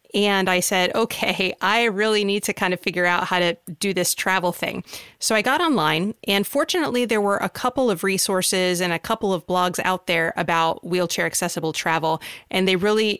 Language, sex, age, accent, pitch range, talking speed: English, female, 30-49, American, 175-220 Hz, 195 wpm